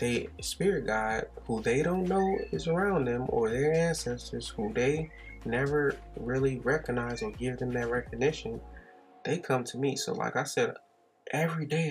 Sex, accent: male, American